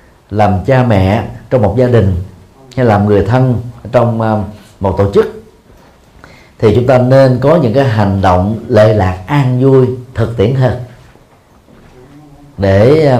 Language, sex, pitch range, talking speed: Vietnamese, male, 105-135 Hz, 145 wpm